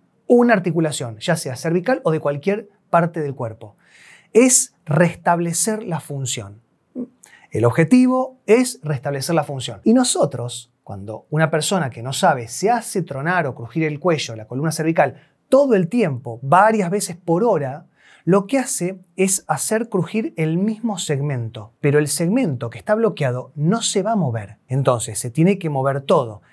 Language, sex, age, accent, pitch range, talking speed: Spanish, male, 30-49, Argentinian, 135-195 Hz, 165 wpm